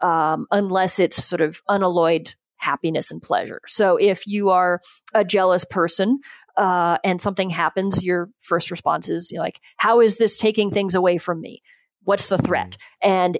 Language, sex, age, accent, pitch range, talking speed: English, female, 40-59, American, 175-220 Hz, 170 wpm